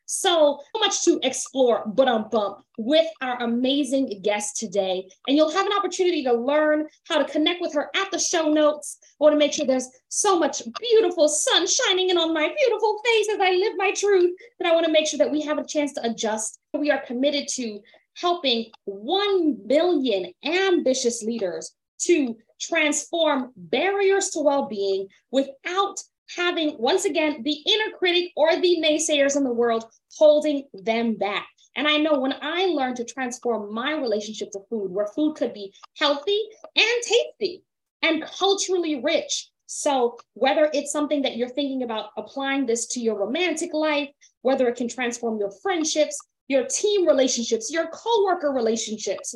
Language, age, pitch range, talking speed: English, 20-39, 240-335 Hz, 170 wpm